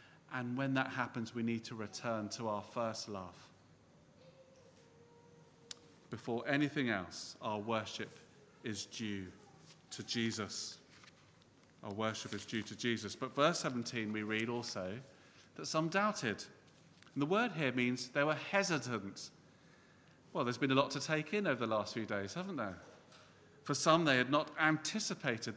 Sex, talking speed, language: male, 155 wpm, English